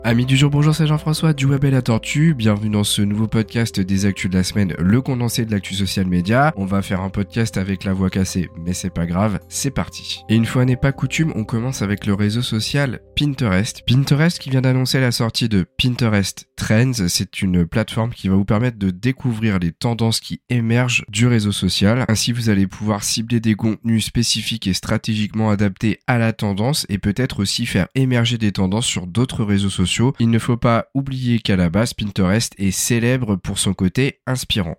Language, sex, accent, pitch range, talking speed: French, male, French, 100-125 Hz, 205 wpm